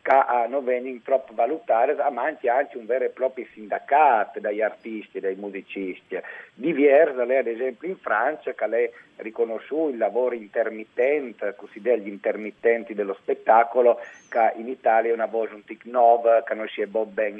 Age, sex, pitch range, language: 50-69, male, 110-135 Hz, Italian